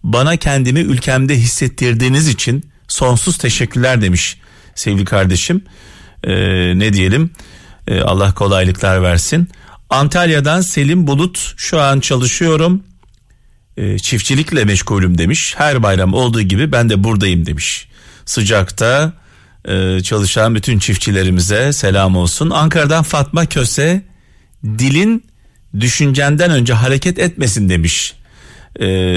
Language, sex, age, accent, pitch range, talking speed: Turkish, male, 40-59, native, 95-140 Hz, 105 wpm